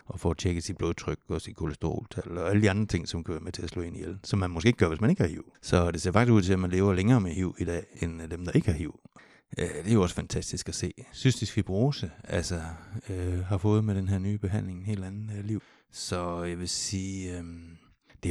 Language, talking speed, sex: Danish, 250 wpm, male